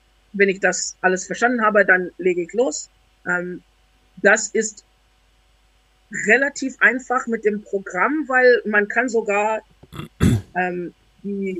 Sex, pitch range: female, 185-235 Hz